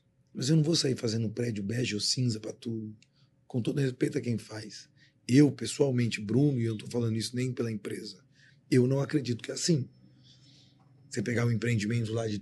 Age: 40-59